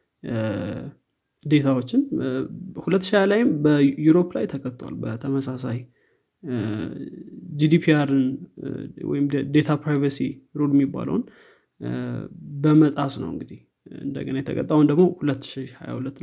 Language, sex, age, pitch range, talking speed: Amharic, male, 20-39, 140-165 Hz, 65 wpm